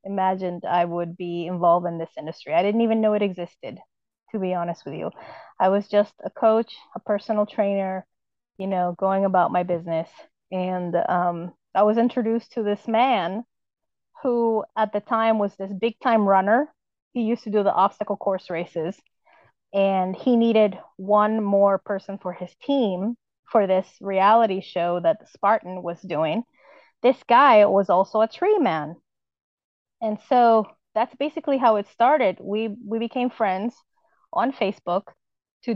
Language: English